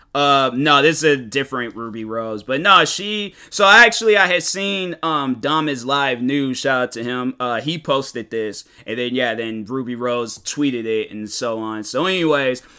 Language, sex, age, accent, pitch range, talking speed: English, male, 20-39, American, 130-160 Hz, 195 wpm